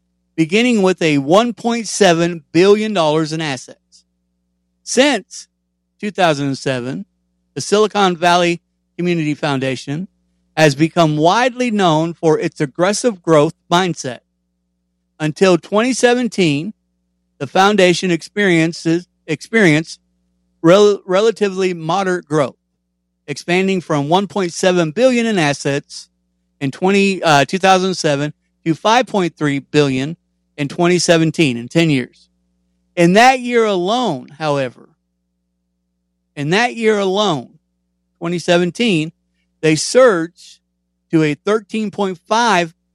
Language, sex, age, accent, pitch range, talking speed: English, male, 50-69, American, 130-190 Hz, 90 wpm